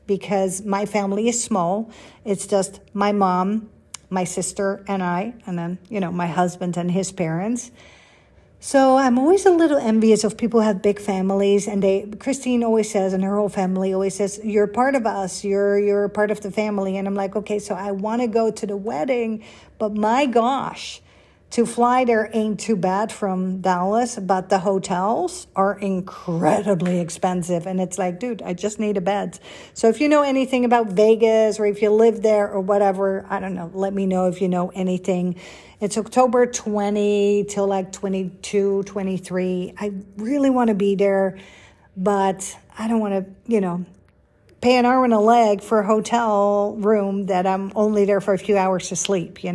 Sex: female